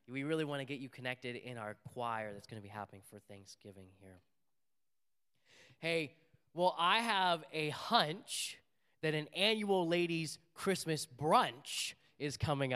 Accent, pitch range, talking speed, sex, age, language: American, 120-165 Hz, 150 wpm, male, 10-29, English